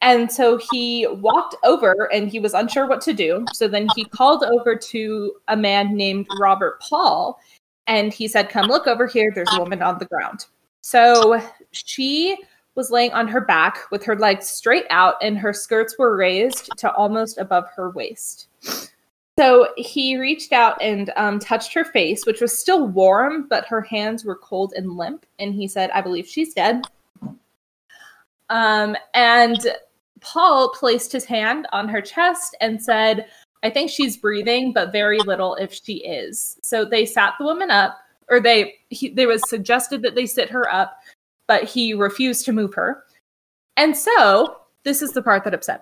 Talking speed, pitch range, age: 175 wpm, 210-270 Hz, 20-39